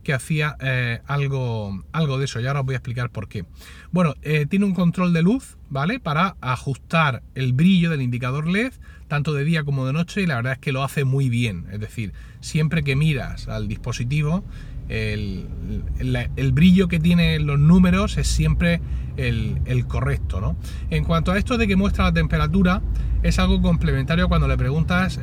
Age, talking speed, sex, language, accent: 30-49, 190 wpm, male, Spanish, Spanish